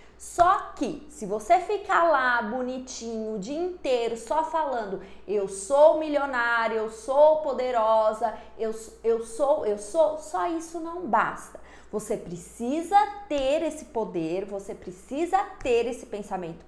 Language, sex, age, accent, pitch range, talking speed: Portuguese, female, 20-39, Brazilian, 220-315 Hz, 135 wpm